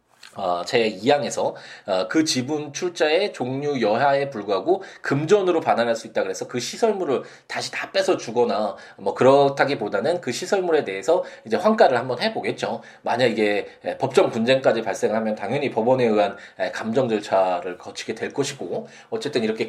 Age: 20-39